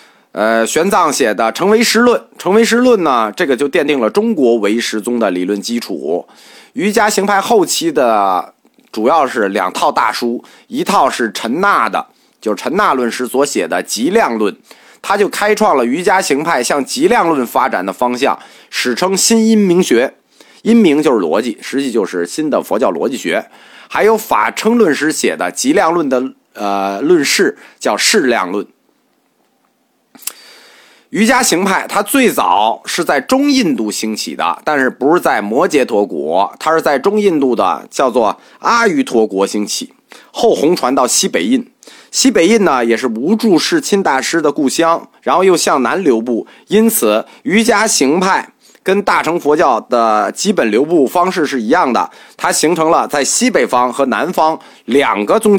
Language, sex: Chinese, male